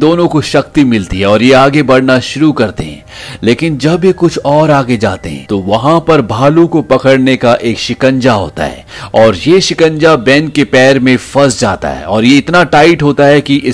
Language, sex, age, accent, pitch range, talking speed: Hindi, male, 40-59, native, 110-145 Hz, 150 wpm